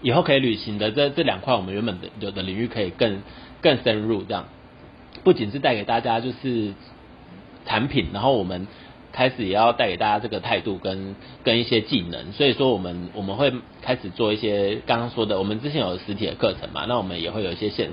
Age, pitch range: 30-49, 100-125 Hz